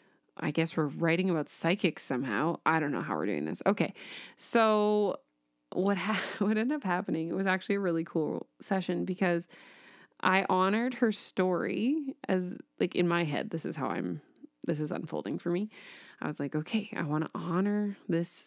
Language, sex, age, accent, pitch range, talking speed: English, female, 20-39, American, 165-210 Hz, 185 wpm